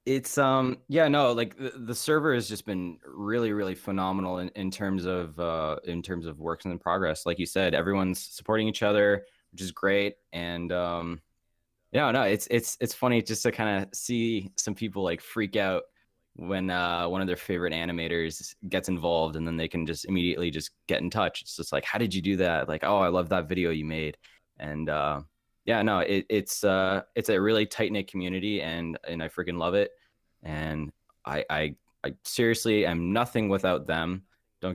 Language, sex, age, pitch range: English, male, 10-29, 85-110 Hz